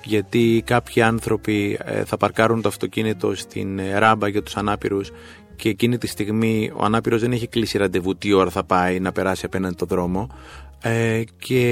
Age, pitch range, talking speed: 30-49, 95-130 Hz, 165 wpm